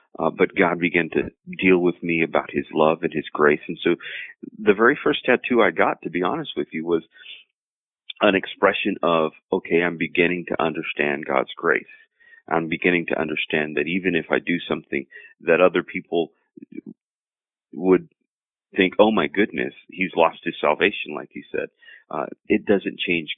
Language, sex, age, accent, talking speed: English, male, 40-59, American, 170 wpm